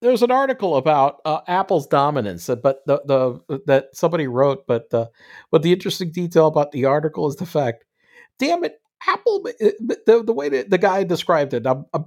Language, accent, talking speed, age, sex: English, American, 190 wpm, 50-69, male